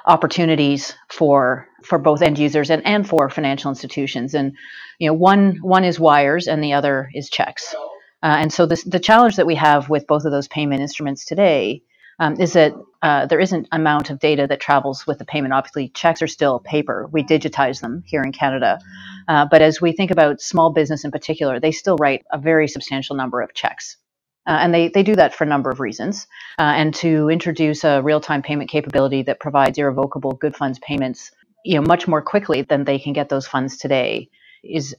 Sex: female